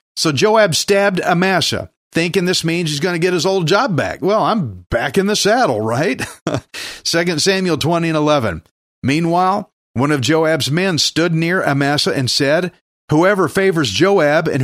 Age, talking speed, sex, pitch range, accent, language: 50-69, 170 wpm, male, 150-205 Hz, American, English